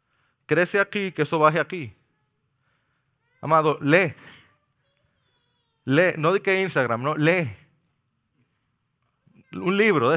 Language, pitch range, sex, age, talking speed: Spanish, 130-170 Hz, male, 30-49, 105 wpm